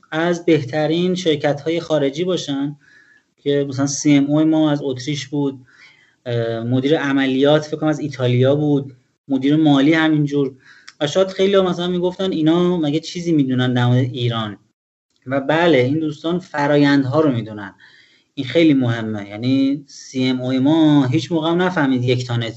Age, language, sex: 30-49, Persian, male